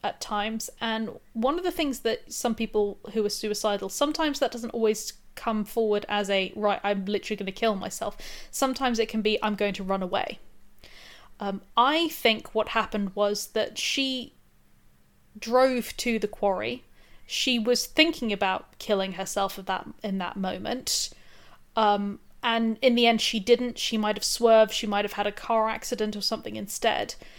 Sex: female